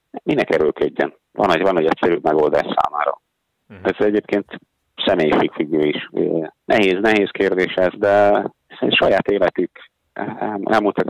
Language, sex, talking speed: Hungarian, male, 110 wpm